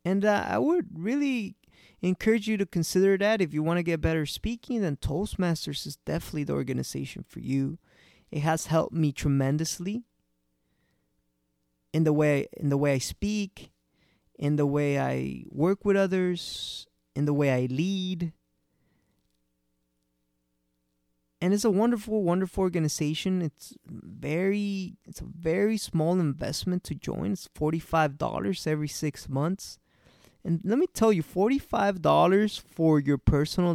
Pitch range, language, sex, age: 130-185 Hz, English, male, 20-39